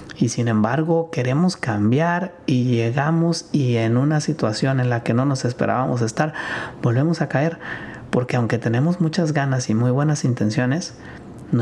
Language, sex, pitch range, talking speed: Spanish, male, 115-145 Hz, 160 wpm